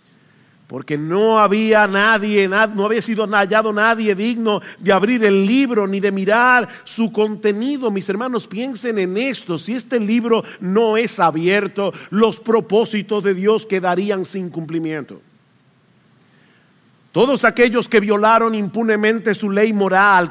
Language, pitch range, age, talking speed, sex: English, 190-230 Hz, 50-69, 135 wpm, male